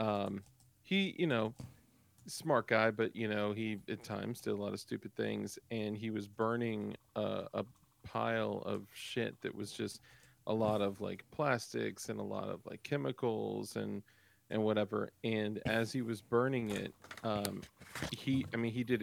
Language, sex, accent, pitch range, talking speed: English, male, American, 105-120 Hz, 175 wpm